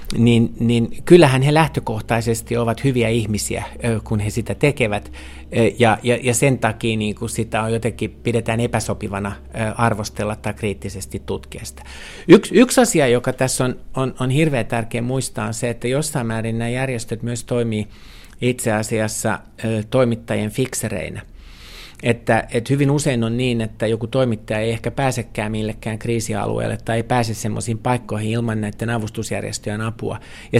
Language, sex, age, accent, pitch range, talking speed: Finnish, male, 50-69, native, 110-125 Hz, 150 wpm